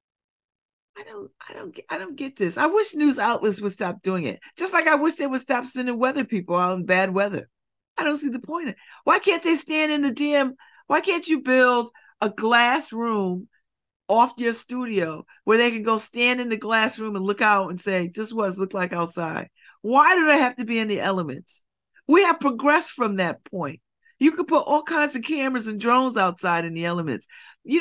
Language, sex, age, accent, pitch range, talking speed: English, female, 50-69, American, 205-310 Hz, 215 wpm